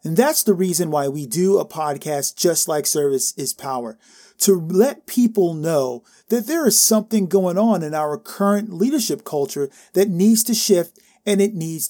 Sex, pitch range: male, 170-225 Hz